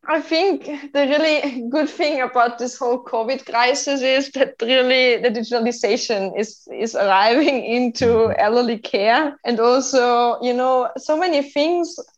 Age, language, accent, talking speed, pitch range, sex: 20-39, English, German, 145 wpm, 225-260 Hz, female